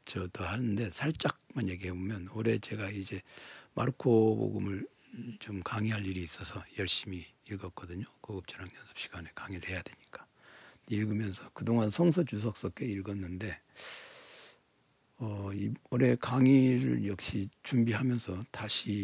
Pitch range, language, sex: 95-125 Hz, Korean, male